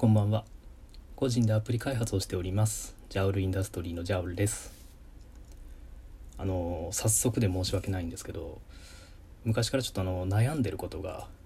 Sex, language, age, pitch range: male, Japanese, 20-39, 90-115 Hz